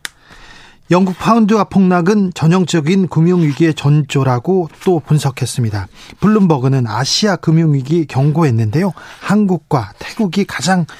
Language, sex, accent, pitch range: Korean, male, native, 145-195 Hz